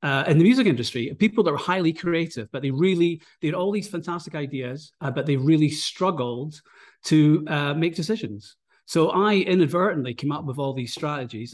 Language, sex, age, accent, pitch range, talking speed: English, male, 40-59, British, 130-175 Hz, 185 wpm